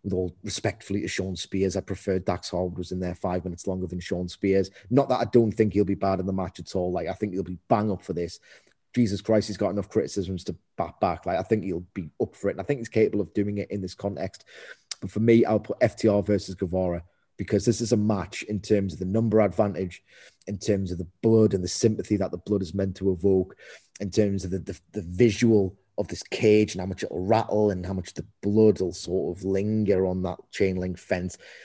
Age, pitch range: 30-49, 95-105 Hz